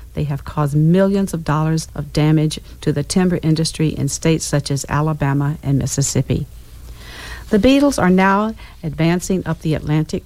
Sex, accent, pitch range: female, American, 150-175 Hz